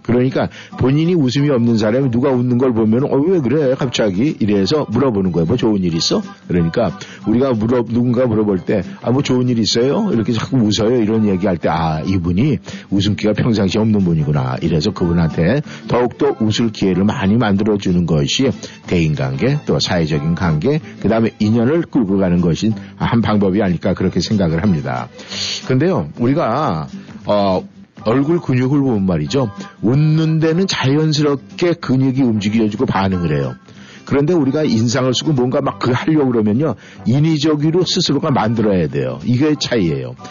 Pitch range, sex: 100-135 Hz, male